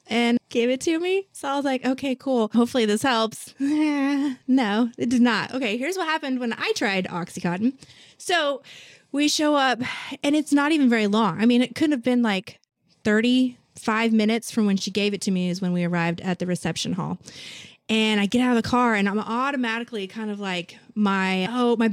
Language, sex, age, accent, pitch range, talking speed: English, female, 20-39, American, 215-295 Hz, 210 wpm